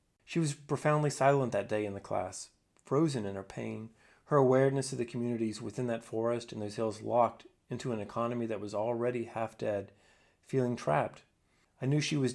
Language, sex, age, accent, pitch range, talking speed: English, male, 30-49, American, 105-135 Hz, 185 wpm